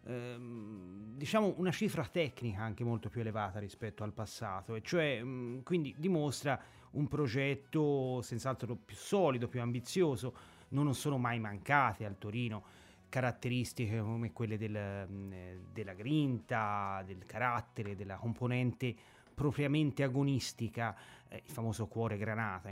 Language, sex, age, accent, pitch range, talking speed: Italian, male, 30-49, native, 105-140 Hz, 115 wpm